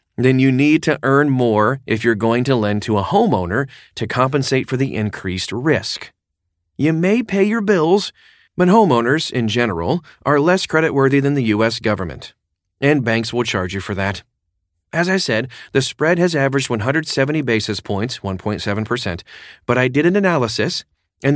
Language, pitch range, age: English, 110-145 Hz, 40-59